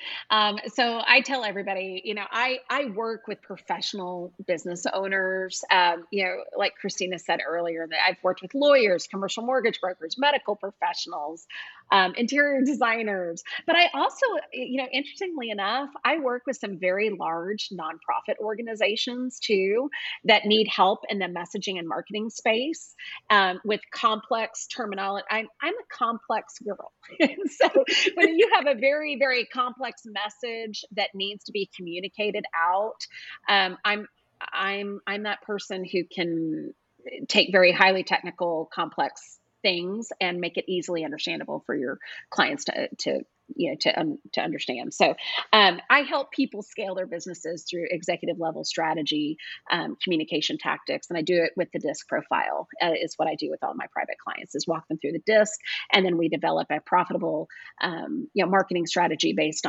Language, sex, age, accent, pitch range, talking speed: English, female, 30-49, American, 180-255 Hz, 165 wpm